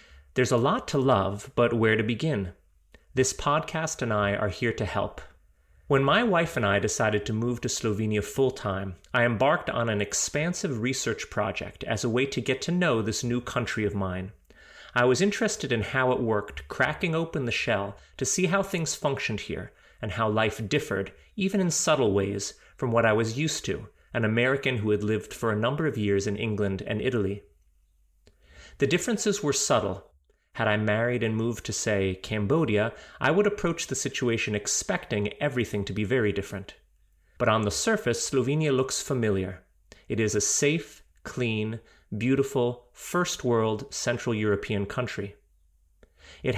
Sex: male